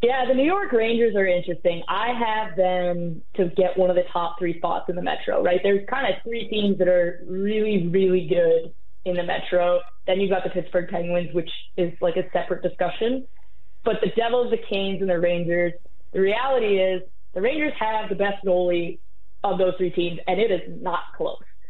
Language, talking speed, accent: English, 200 wpm, American